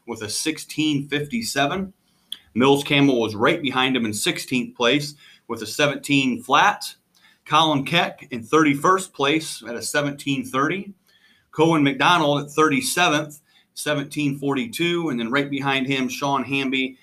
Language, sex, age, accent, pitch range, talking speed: English, male, 30-49, American, 115-145 Hz, 125 wpm